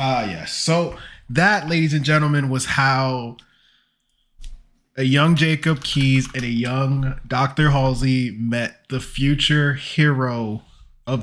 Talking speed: 125 wpm